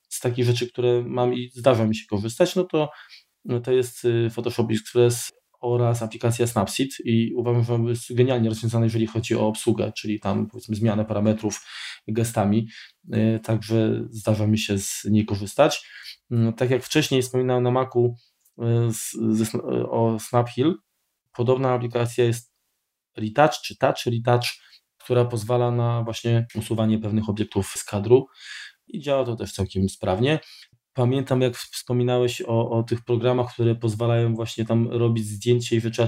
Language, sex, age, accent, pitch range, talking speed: Polish, male, 20-39, native, 110-125 Hz, 155 wpm